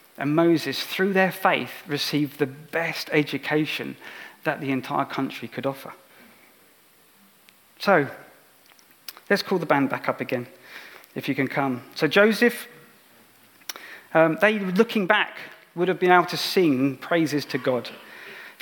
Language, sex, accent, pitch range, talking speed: English, male, British, 140-175 Hz, 140 wpm